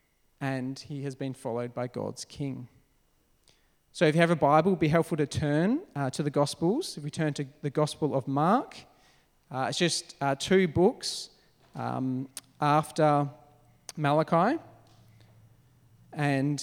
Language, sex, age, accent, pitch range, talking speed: English, male, 40-59, Australian, 130-160 Hz, 150 wpm